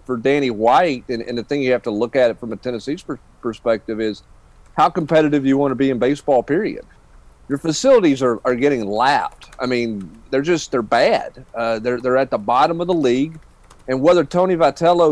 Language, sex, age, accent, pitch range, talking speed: English, male, 40-59, American, 130-165 Hz, 210 wpm